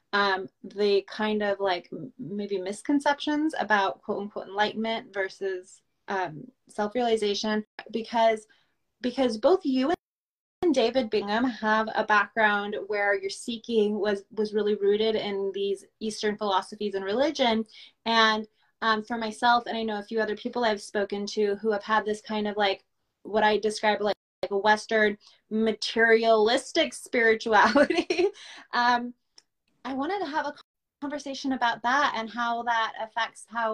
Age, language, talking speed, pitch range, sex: 20-39, English, 140 wpm, 210-255 Hz, female